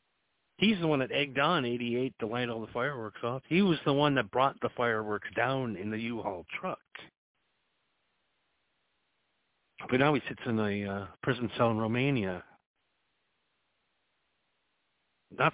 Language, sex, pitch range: English, male, 105-145 Hz